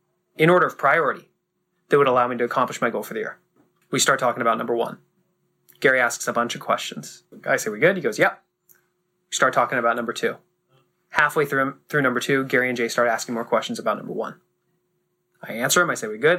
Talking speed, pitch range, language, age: 230 wpm, 125-175 Hz, English, 20-39